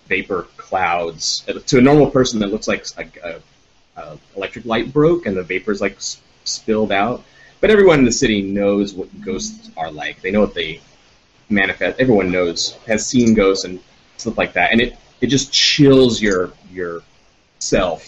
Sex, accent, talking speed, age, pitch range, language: male, American, 180 wpm, 30-49, 95-125 Hz, English